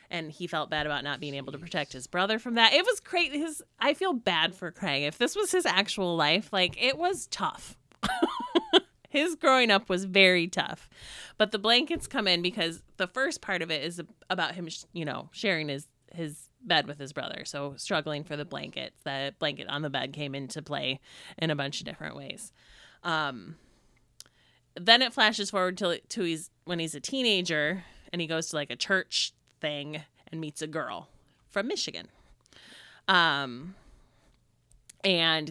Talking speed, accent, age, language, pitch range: 185 wpm, American, 30-49, English, 145-195 Hz